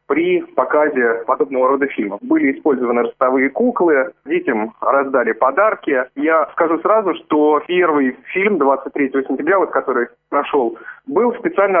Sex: male